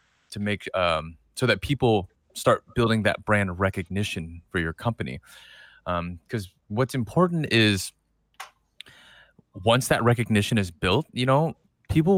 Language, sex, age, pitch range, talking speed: English, male, 20-39, 90-115 Hz, 135 wpm